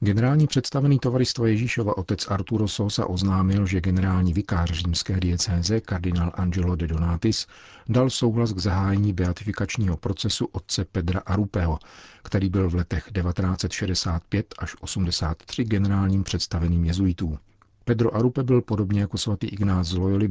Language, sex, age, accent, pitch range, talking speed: Czech, male, 50-69, native, 90-110 Hz, 135 wpm